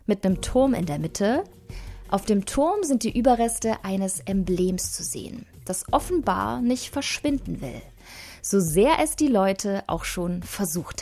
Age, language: 20-39, German